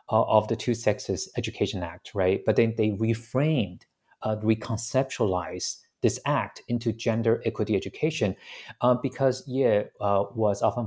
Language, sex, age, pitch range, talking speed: English, male, 30-49, 100-125 Hz, 130 wpm